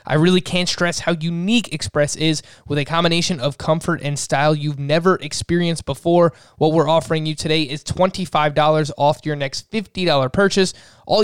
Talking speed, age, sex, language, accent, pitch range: 170 wpm, 20-39, male, English, American, 145-180 Hz